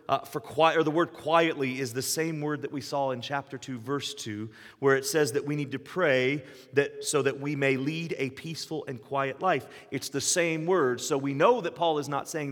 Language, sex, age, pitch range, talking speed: English, male, 30-49, 125-155 Hz, 240 wpm